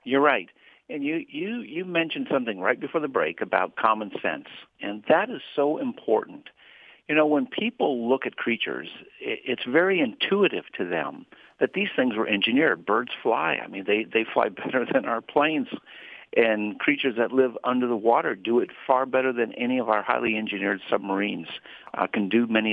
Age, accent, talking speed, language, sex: 60-79, American, 185 wpm, English, male